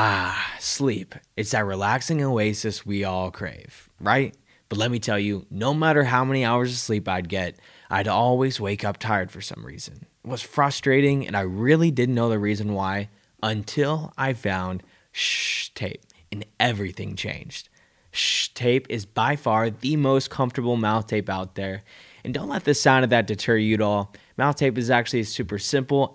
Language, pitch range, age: English, 105-130 Hz, 20-39